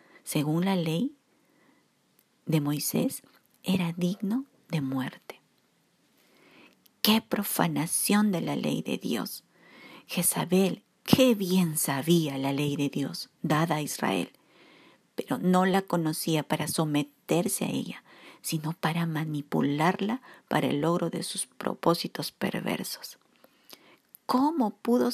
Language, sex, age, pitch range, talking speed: Spanish, female, 50-69, 165-230 Hz, 110 wpm